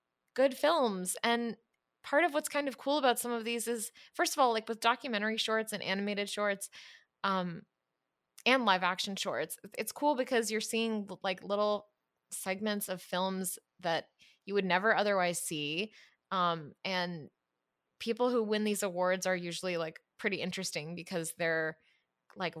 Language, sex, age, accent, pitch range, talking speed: English, female, 20-39, American, 175-230 Hz, 160 wpm